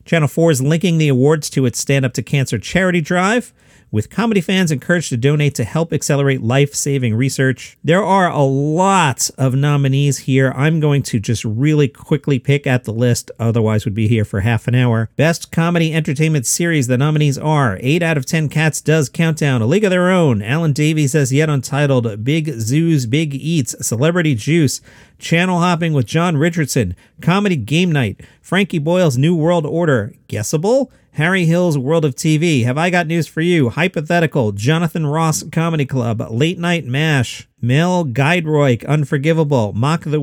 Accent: American